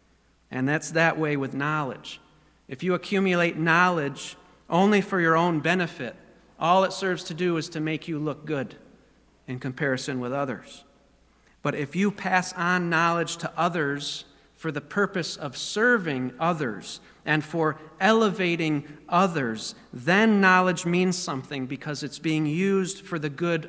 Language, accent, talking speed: English, American, 150 wpm